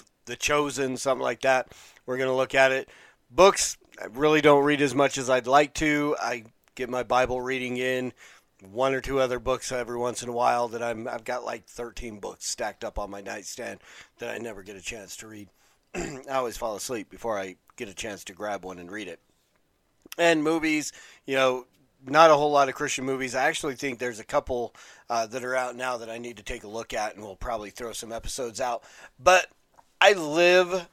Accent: American